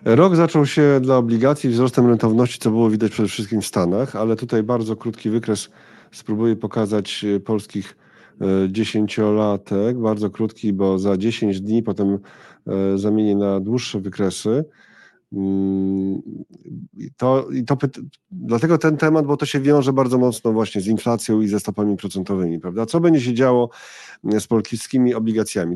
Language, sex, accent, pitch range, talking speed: Polish, male, native, 100-115 Hz, 135 wpm